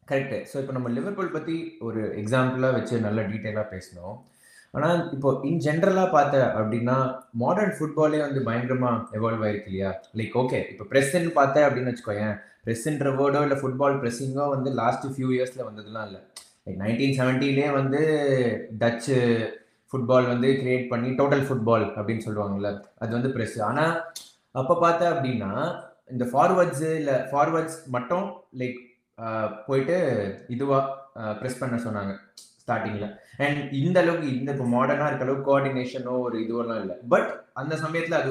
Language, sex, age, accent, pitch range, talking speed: Tamil, male, 20-39, native, 115-145 Hz, 140 wpm